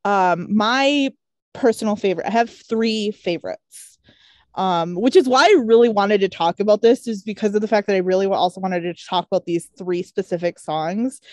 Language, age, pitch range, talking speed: English, 20-39, 185-225 Hz, 190 wpm